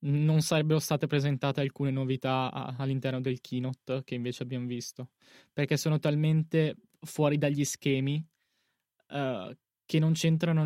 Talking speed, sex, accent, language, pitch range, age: 125 wpm, male, native, Italian, 135-160 Hz, 20-39